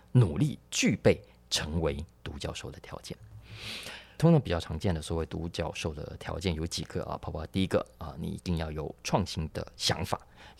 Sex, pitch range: male, 80-110 Hz